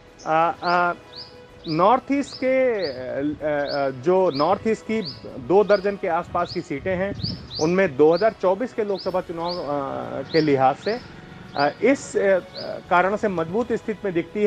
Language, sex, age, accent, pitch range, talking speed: Hindi, male, 30-49, native, 170-220 Hz, 120 wpm